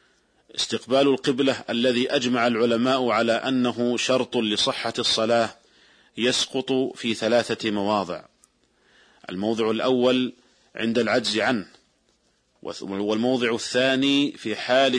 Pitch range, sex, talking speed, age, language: 115-130 Hz, male, 90 wpm, 40-59, Arabic